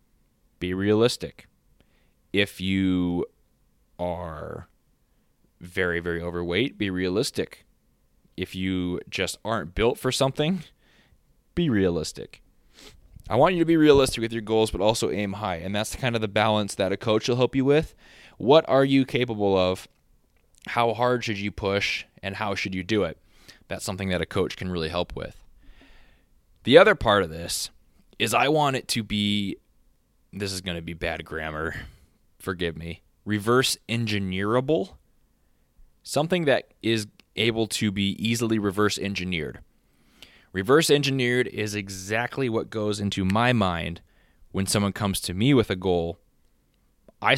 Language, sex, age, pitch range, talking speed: English, male, 20-39, 90-115 Hz, 145 wpm